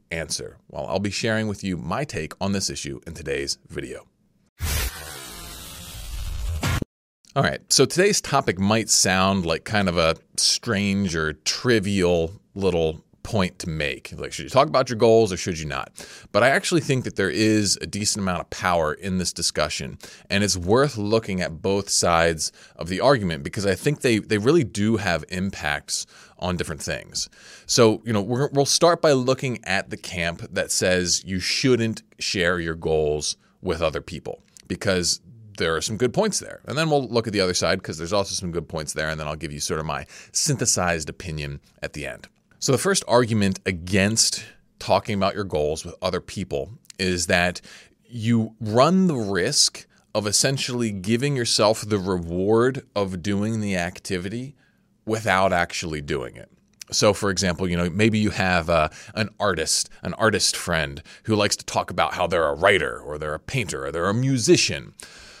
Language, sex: English, male